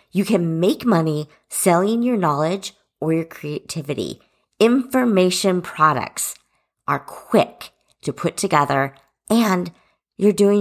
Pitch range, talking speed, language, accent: 155-210 Hz, 115 wpm, English, American